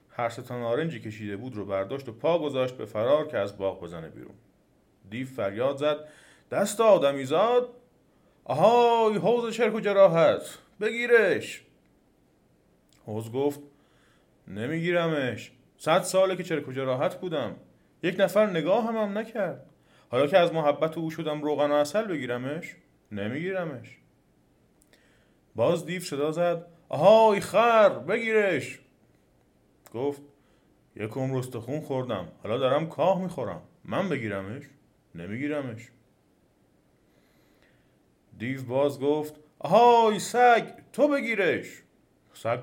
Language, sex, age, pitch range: Persian, male, 30-49, 130-190 Hz